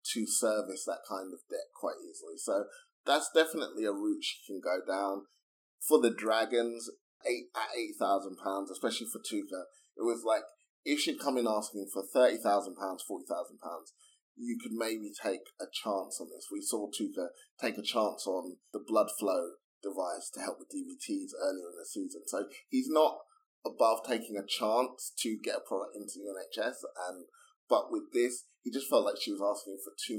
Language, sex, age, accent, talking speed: English, male, 20-39, British, 180 wpm